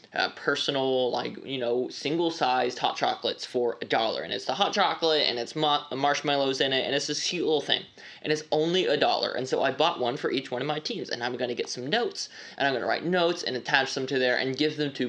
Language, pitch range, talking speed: English, 125-160 Hz, 265 wpm